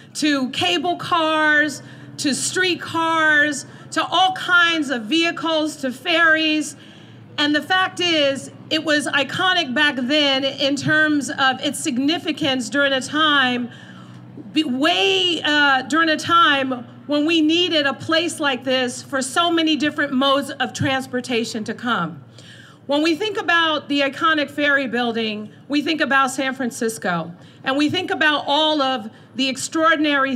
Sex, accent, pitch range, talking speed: female, American, 255-310 Hz, 140 wpm